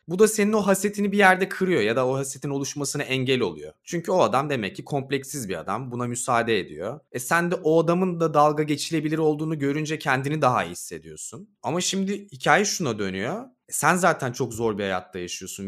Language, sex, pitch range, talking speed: Turkish, male, 105-150 Hz, 205 wpm